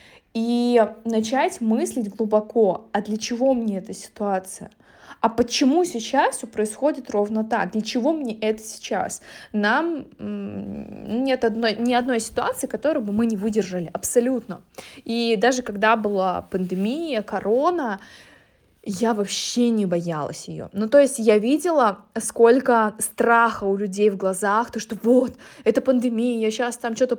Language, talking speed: Russian, 140 wpm